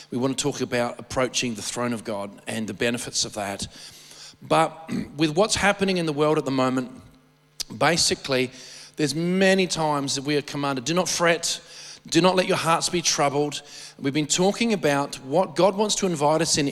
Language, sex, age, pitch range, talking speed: English, male, 40-59, 135-170 Hz, 190 wpm